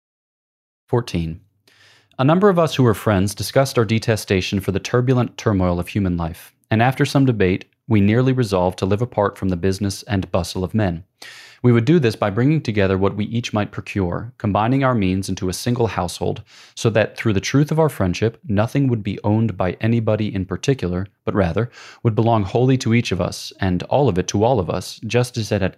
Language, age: English, 30-49